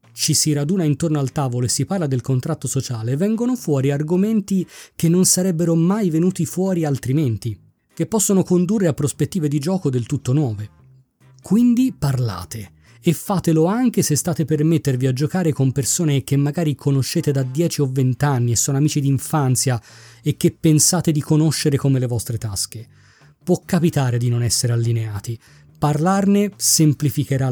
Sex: male